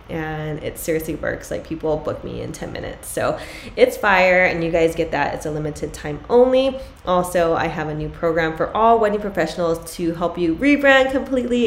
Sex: female